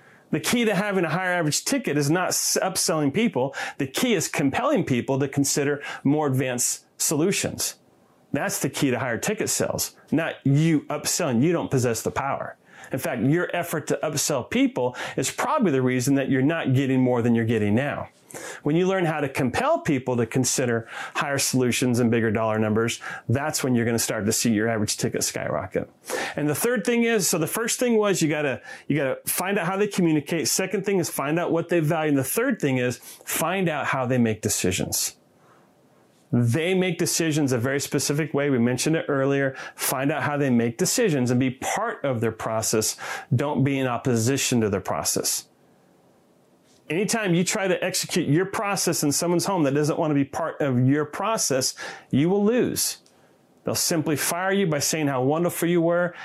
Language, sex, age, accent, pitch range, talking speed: English, male, 30-49, American, 125-170 Hz, 195 wpm